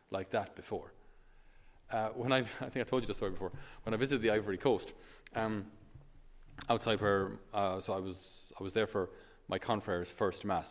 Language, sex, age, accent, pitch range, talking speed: English, male, 30-49, Irish, 105-145 Hz, 195 wpm